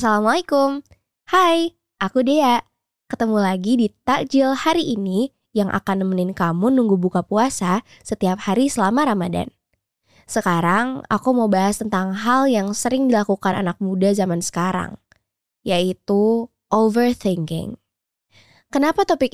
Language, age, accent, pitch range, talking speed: Indonesian, 20-39, native, 185-235 Hz, 120 wpm